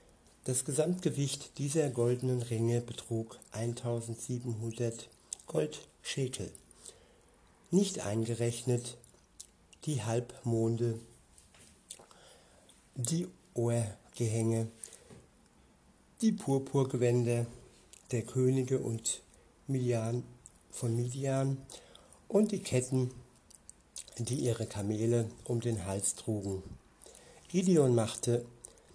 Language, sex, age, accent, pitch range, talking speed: German, male, 60-79, German, 115-135 Hz, 70 wpm